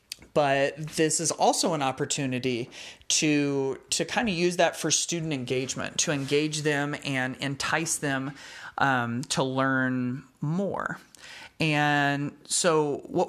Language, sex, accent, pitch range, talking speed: English, male, American, 130-155 Hz, 125 wpm